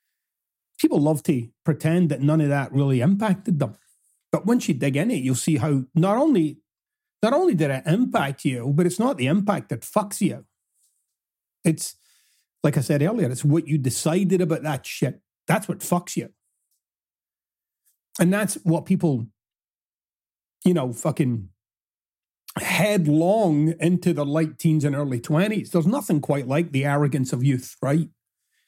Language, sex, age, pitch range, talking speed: English, male, 30-49, 145-200 Hz, 160 wpm